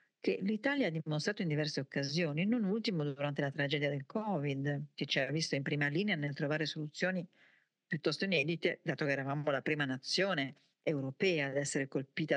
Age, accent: 50-69, native